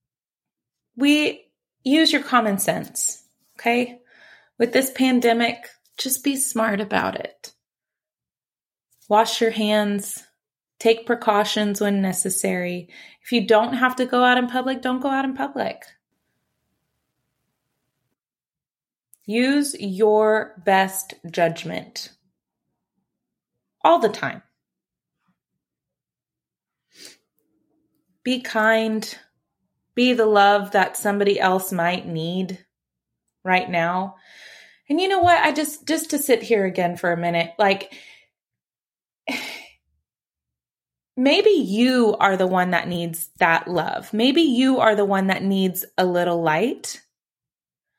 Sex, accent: female, American